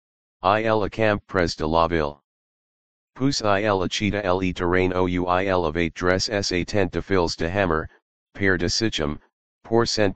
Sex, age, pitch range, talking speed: male, 40-59, 85-100 Hz, 160 wpm